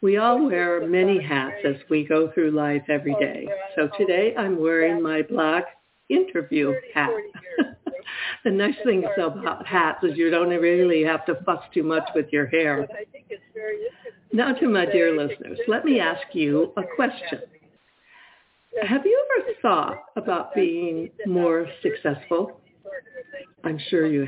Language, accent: English, American